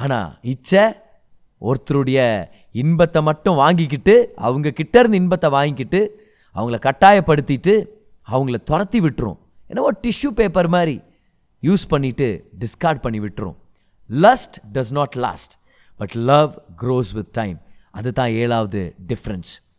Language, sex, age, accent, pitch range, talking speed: Tamil, male, 30-49, native, 110-165 Hz, 110 wpm